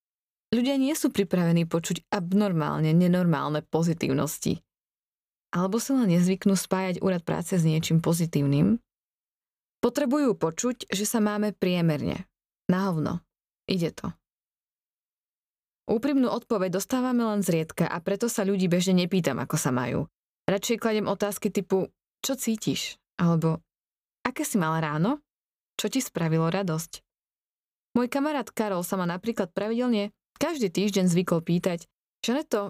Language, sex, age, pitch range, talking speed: Slovak, female, 20-39, 170-215 Hz, 125 wpm